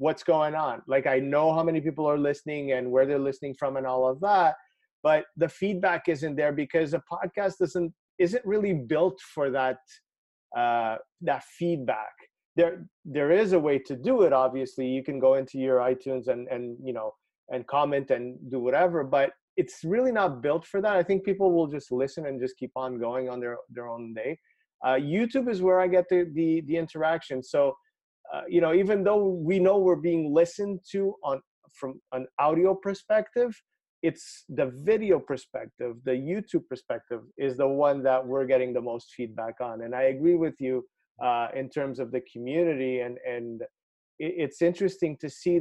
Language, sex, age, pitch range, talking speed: English, male, 30-49, 130-175 Hz, 190 wpm